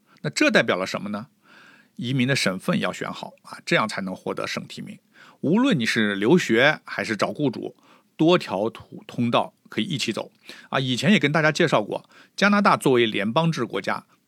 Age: 50-69